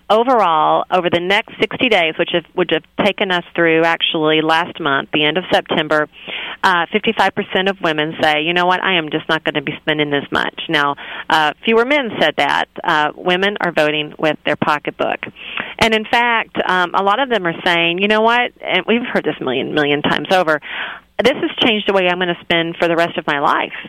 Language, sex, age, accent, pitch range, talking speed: English, female, 40-59, American, 155-205 Hz, 225 wpm